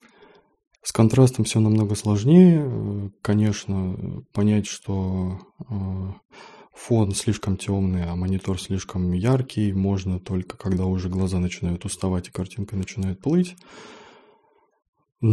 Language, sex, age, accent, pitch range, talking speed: Russian, male, 20-39, native, 95-115 Hz, 100 wpm